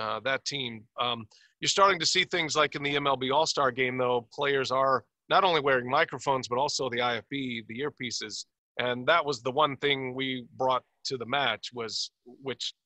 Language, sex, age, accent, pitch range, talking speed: English, male, 40-59, American, 120-145 Hz, 200 wpm